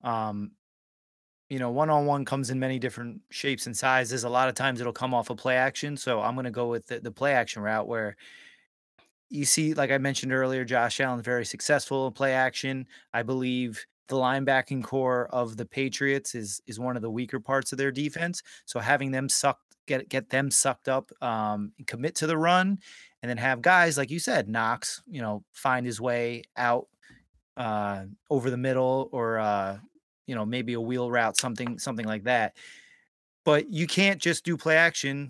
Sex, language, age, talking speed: male, English, 30-49, 200 wpm